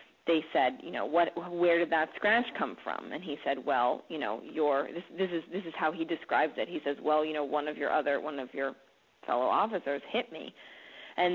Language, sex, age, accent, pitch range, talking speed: English, female, 30-49, American, 150-180 Hz, 235 wpm